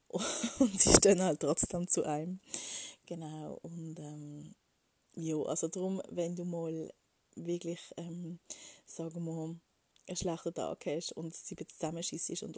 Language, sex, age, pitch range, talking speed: German, female, 20-39, 160-185 Hz, 140 wpm